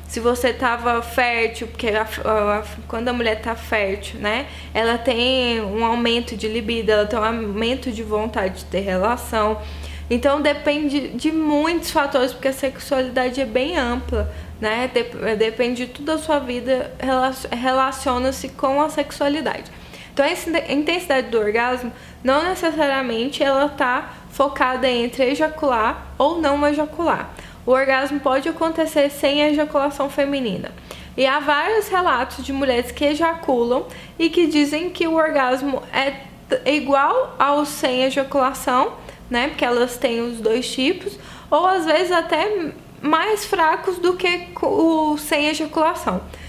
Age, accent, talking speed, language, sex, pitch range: 20-39, Brazilian, 140 wpm, Portuguese, female, 240-300 Hz